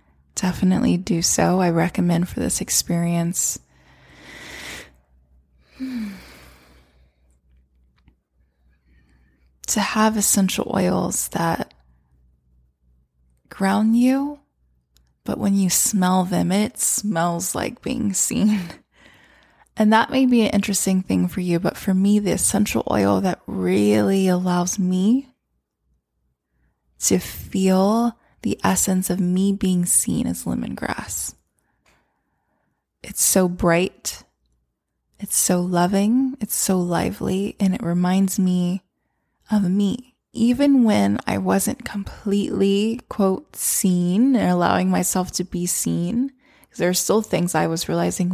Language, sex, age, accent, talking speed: English, female, 20-39, American, 110 wpm